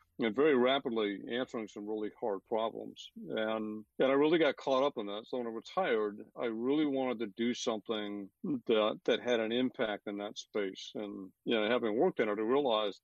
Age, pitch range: 50-69, 105-125 Hz